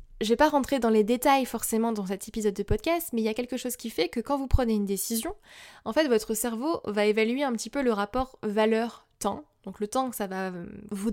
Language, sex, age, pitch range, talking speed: French, female, 20-39, 200-235 Hz, 255 wpm